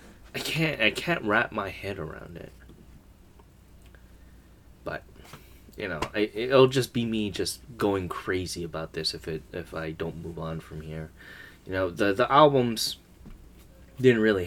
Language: English